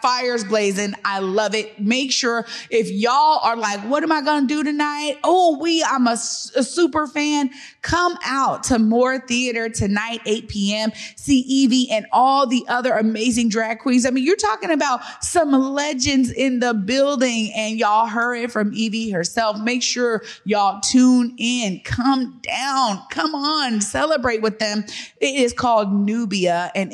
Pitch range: 210-265 Hz